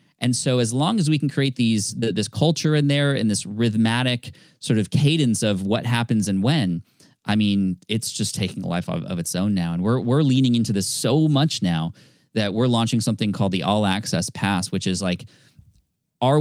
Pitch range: 105-135 Hz